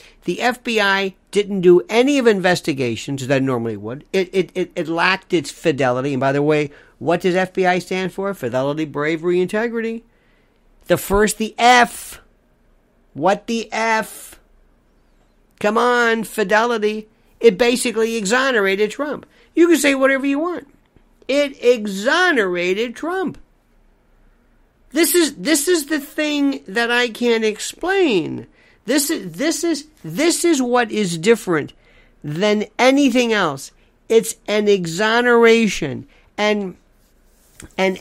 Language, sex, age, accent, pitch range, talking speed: English, male, 50-69, American, 175-240 Hz, 125 wpm